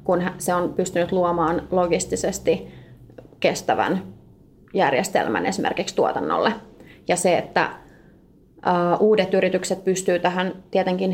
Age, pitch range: 20-39, 175-195 Hz